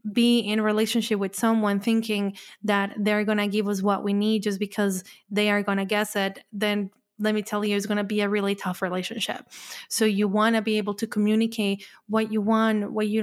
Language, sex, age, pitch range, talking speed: English, female, 20-39, 200-230 Hz, 220 wpm